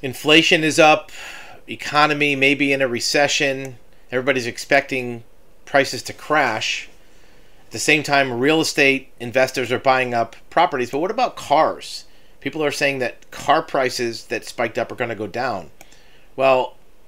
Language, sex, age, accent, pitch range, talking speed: English, male, 40-59, American, 120-145 Hz, 155 wpm